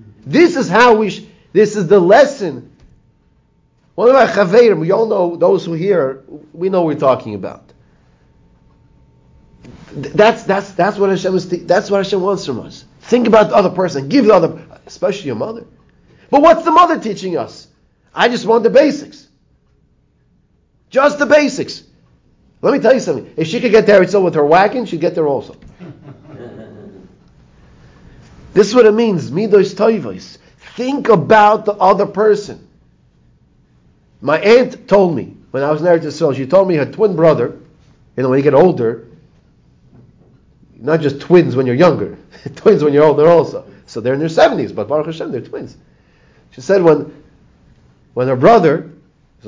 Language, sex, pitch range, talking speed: English, male, 140-215 Hz, 165 wpm